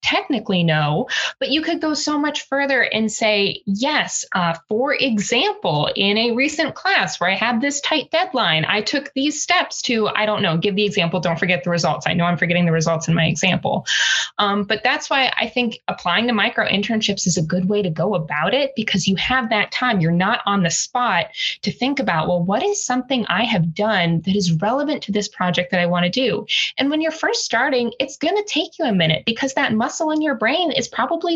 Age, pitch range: 20-39, 185-260 Hz